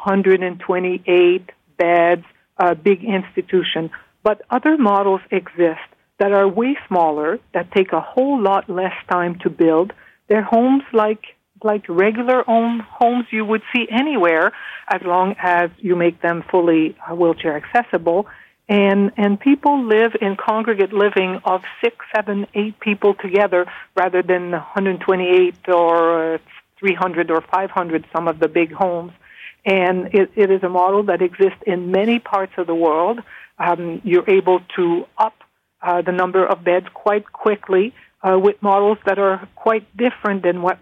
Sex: female